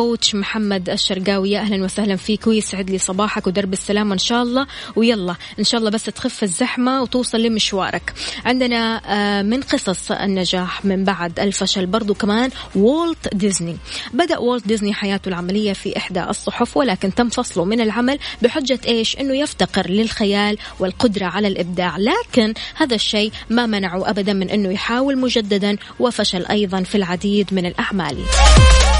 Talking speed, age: 145 wpm, 20-39